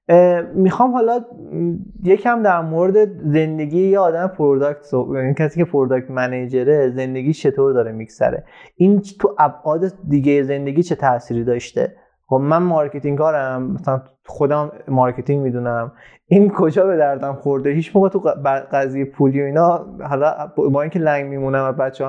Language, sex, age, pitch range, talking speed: Persian, male, 20-39, 135-180 Hz, 135 wpm